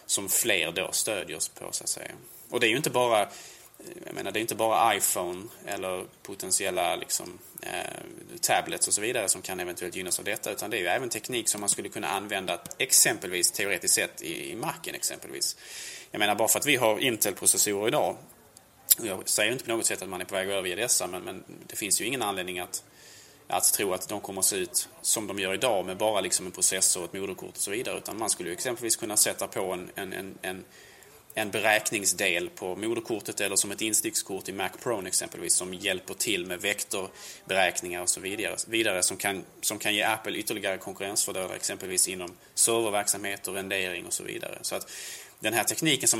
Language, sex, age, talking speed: Swedish, male, 20-39, 210 wpm